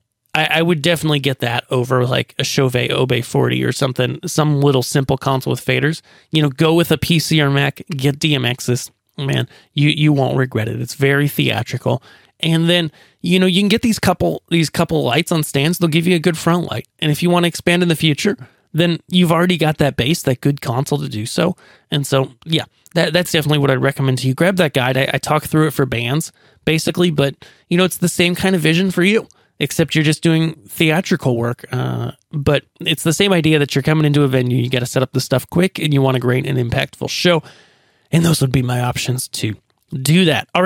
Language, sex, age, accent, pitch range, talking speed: English, male, 20-39, American, 130-170 Hz, 230 wpm